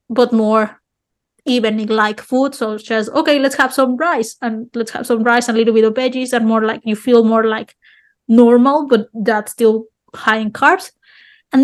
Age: 20-39